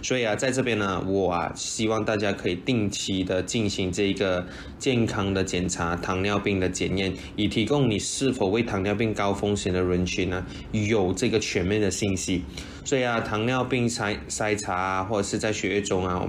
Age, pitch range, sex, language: 20-39, 95-115 Hz, male, Chinese